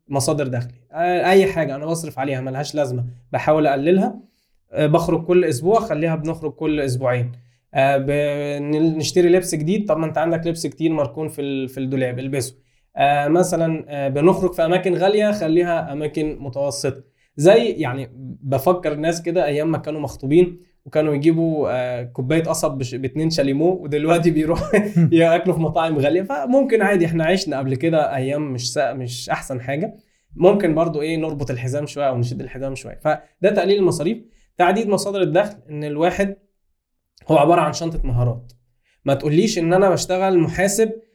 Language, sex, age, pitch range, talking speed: Arabic, male, 20-39, 140-180 Hz, 145 wpm